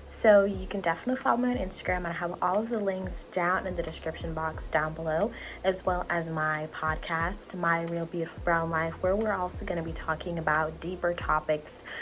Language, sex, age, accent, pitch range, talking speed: English, female, 20-39, American, 155-180 Hz, 205 wpm